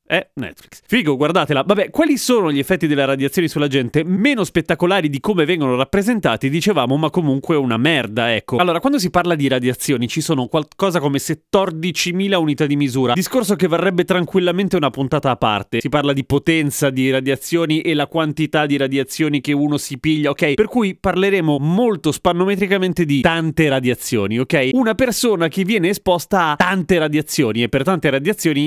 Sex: male